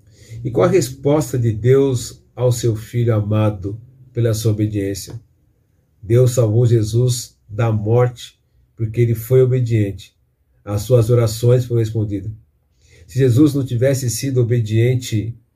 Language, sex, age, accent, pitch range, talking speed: Portuguese, male, 40-59, Brazilian, 110-125 Hz, 125 wpm